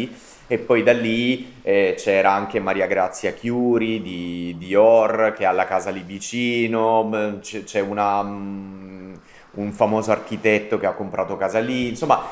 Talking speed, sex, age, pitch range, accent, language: 145 wpm, male, 30-49, 100-120 Hz, native, Italian